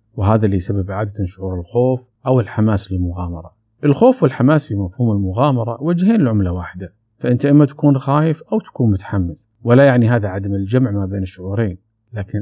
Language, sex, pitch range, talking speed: Arabic, male, 100-135 Hz, 160 wpm